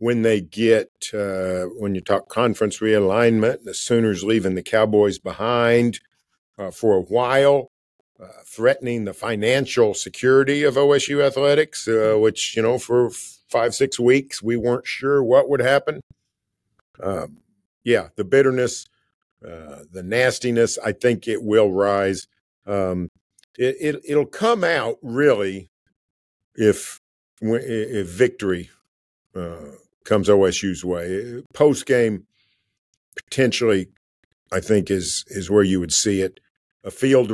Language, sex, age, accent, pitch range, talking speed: English, male, 50-69, American, 95-120 Hz, 130 wpm